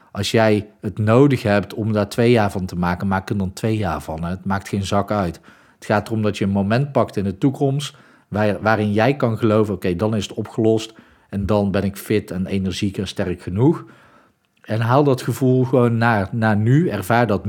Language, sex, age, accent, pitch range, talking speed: Dutch, male, 40-59, Dutch, 105-130 Hz, 215 wpm